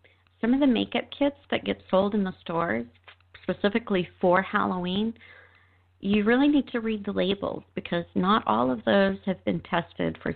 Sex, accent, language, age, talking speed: female, American, English, 40-59, 175 wpm